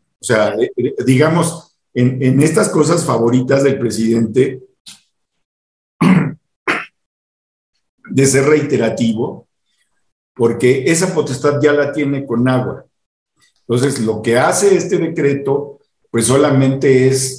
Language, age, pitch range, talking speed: Spanish, 50-69, 115-145 Hz, 105 wpm